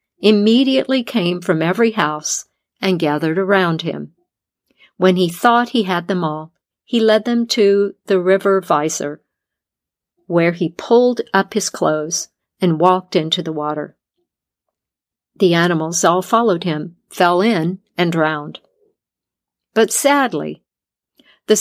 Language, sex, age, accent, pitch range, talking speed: English, female, 50-69, American, 175-225 Hz, 130 wpm